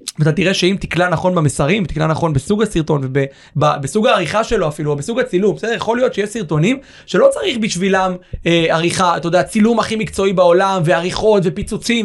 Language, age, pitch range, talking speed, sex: Hebrew, 20-39, 155-200 Hz, 175 wpm, male